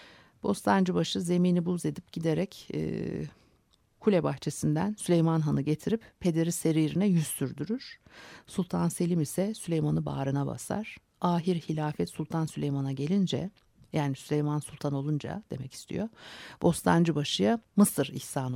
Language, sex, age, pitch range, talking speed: Turkish, female, 50-69, 145-185 Hz, 110 wpm